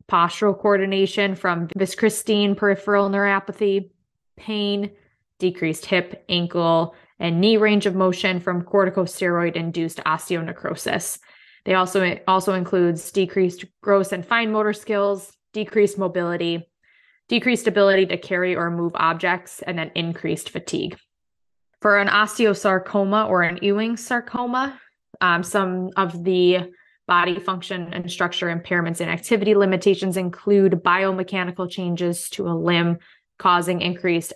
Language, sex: English, female